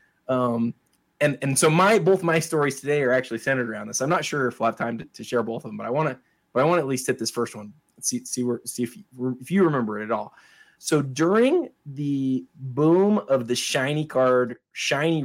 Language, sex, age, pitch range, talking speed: English, male, 20-39, 115-155 Hz, 250 wpm